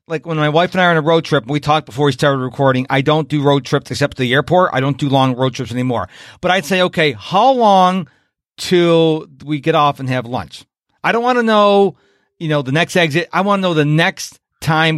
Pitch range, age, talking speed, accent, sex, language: 145-190 Hz, 40-59, 255 wpm, American, male, English